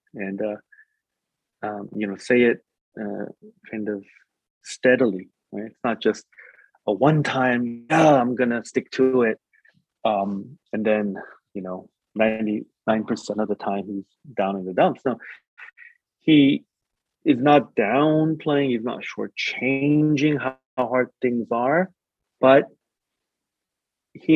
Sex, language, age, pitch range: male, English, 30-49, 100-130 Hz